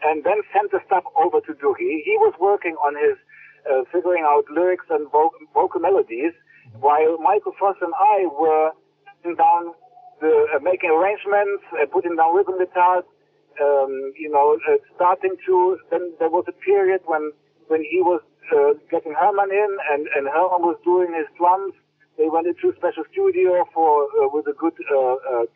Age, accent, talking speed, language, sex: 60-79, German, 180 wpm, English, male